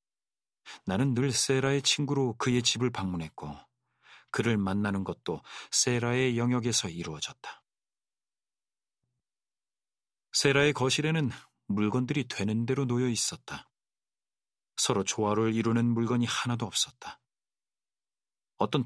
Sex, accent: male, native